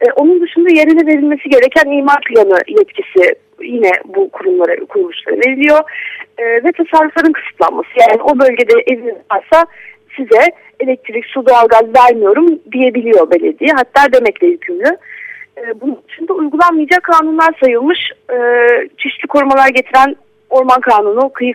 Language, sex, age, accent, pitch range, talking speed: Turkish, female, 40-59, native, 250-350 Hz, 130 wpm